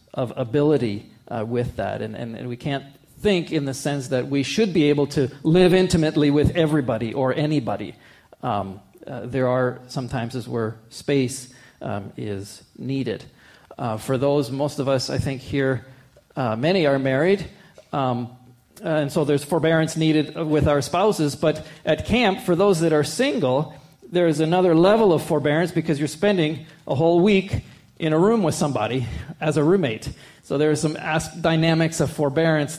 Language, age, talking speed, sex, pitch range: English, 40-59, 175 wpm, male, 125-160 Hz